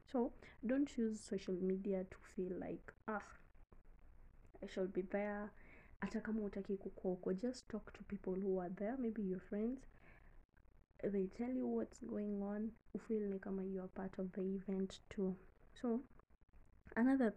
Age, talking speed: 20-39, 145 wpm